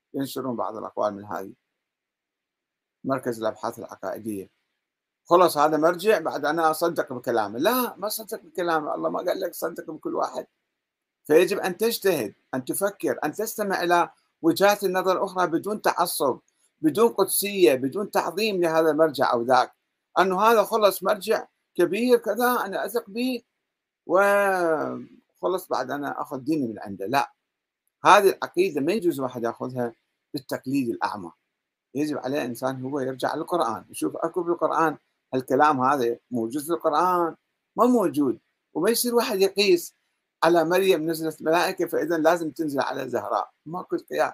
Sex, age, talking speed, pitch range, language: male, 50-69, 140 wpm, 135-200 Hz, Arabic